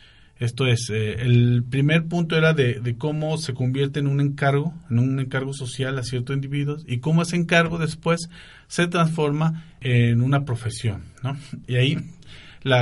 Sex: male